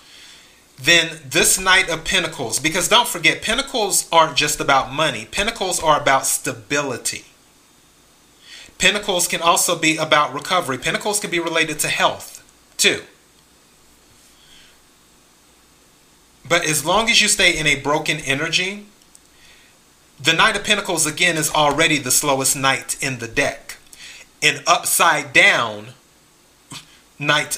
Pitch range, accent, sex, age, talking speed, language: 135-170 Hz, American, male, 30-49, 125 wpm, English